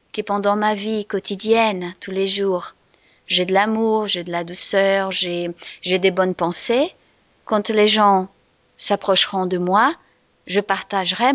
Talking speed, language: 145 wpm, French